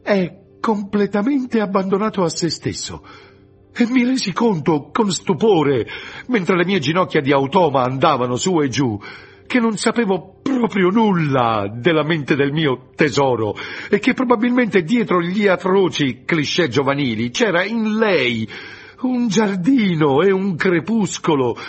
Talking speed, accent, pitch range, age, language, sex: 135 wpm, native, 140-220 Hz, 50-69, Italian, male